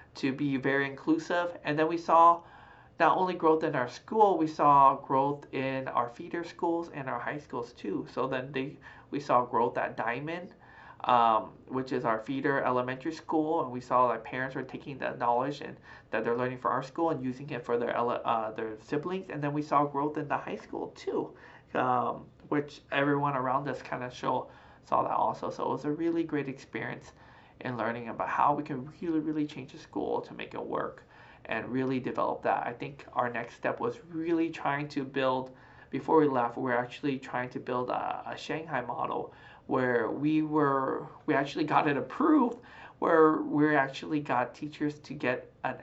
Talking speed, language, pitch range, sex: 200 wpm, English, 130-155 Hz, male